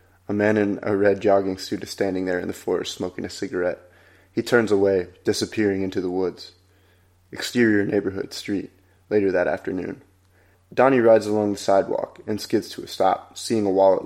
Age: 20-39